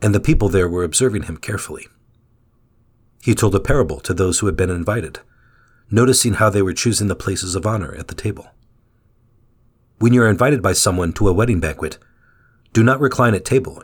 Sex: male